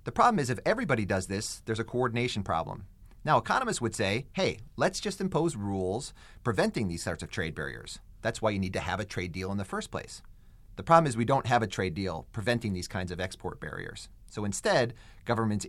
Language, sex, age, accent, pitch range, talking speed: English, male, 30-49, American, 100-125 Hz, 220 wpm